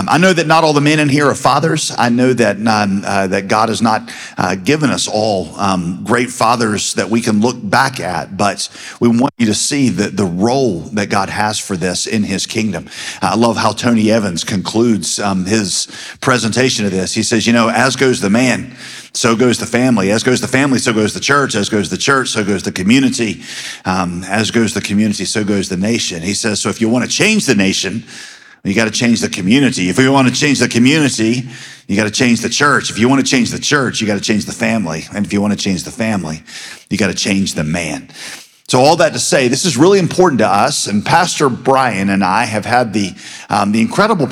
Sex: male